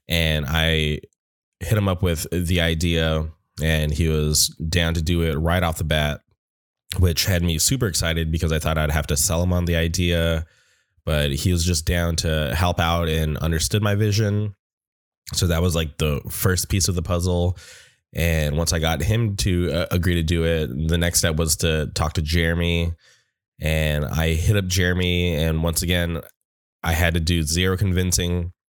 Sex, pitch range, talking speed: male, 80-90 Hz, 190 wpm